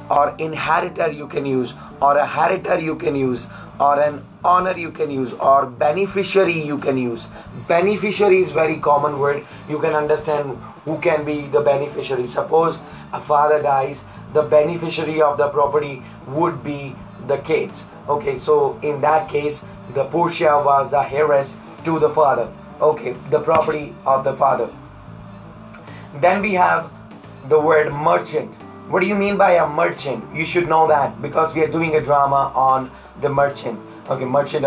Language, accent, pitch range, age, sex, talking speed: English, Indian, 140-170 Hz, 20-39, male, 165 wpm